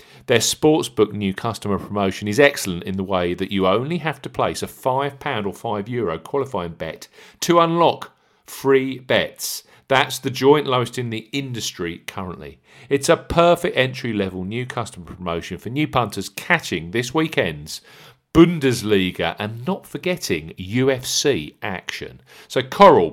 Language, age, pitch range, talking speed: English, 50-69, 100-140 Hz, 145 wpm